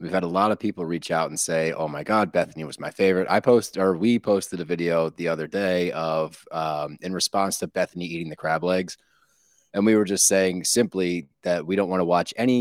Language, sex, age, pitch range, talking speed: English, male, 30-49, 85-100 Hz, 240 wpm